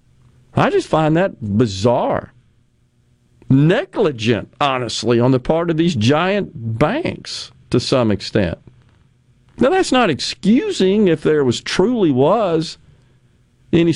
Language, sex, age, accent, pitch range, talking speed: English, male, 50-69, American, 115-150 Hz, 115 wpm